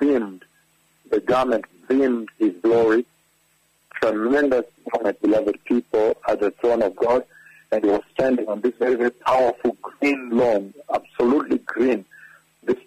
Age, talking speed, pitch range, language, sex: 60-79, 125 wpm, 110-130 Hz, English, male